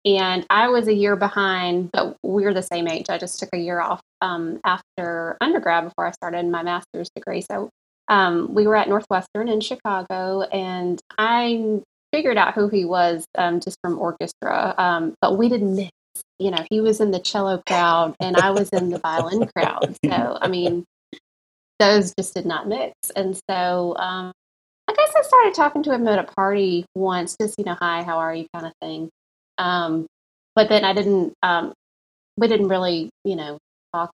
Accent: American